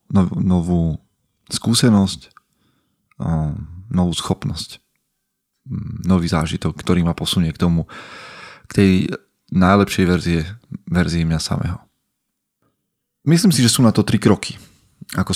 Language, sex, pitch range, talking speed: Slovak, male, 85-105 Hz, 100 wpm